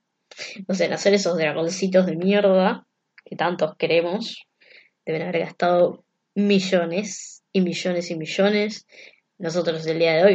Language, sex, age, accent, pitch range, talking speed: Spanish, female, 20-39, Argentinian, 170-200 Hz, 140 wpm